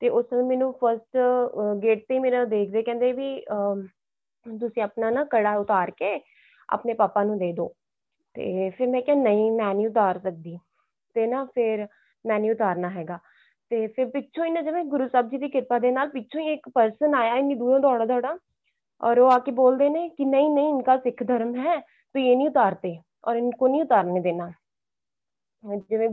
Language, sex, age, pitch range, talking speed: Punjabi, female, 20-39, 215-260 Hz, 180 wpm